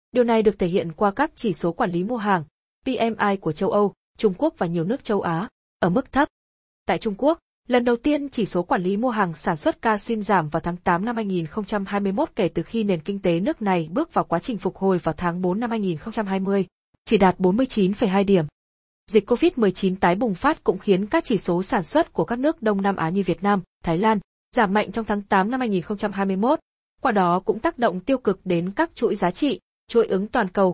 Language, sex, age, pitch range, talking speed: Vietnamese, female, 20-39, 185-235 Hz, 230 wpm